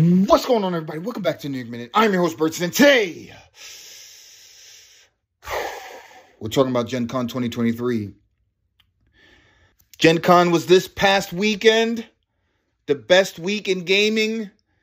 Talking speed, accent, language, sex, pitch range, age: 130 wpm, American, English, male, 120-180 Hz, 30-49